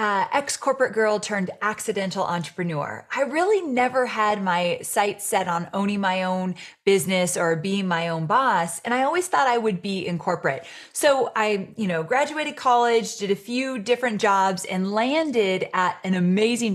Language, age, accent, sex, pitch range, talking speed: English, 30-49, American, female, 185-250 Hz, 170 wpm